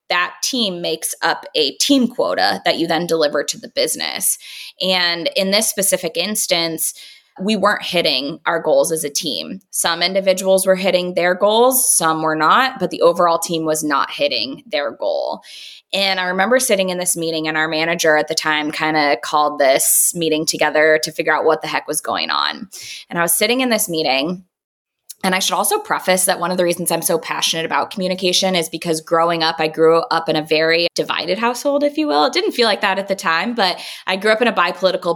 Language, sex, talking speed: English, female, 215 wpm